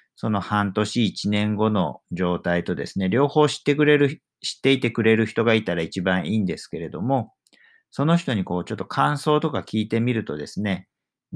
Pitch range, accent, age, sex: 100-140 Hz, native, 50-69, male